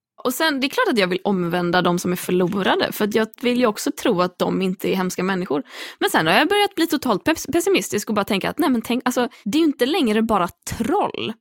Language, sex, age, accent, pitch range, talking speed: English, female, 20-39, Swedish, 180-245 Hz, 270 wpm